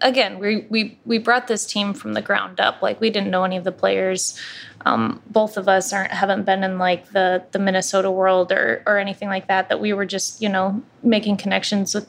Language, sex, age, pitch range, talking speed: English, female, 20-39, 190-215 Hz, 230 wpm